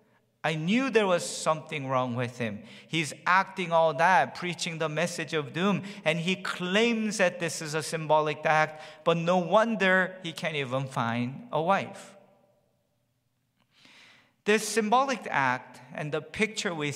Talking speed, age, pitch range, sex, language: 150 wpm, 50-69, 130-180 Hz, male, English